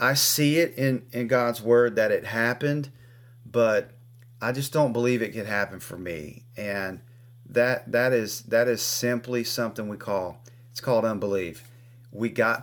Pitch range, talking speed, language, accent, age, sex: 115-125 Hz, 165 wpm, English, American, 40-59, male